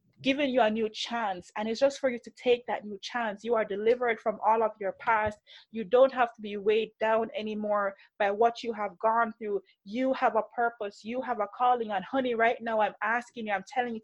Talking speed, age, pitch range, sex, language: 235 wpm, 20-39, 210-250 Hz, female, English